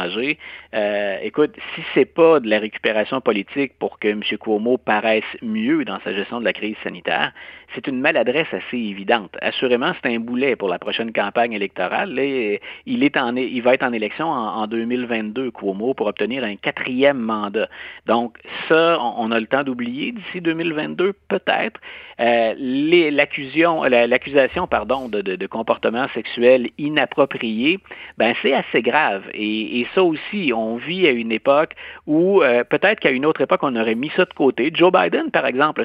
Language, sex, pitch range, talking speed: French, male, 110-150 Hz, 170 wpm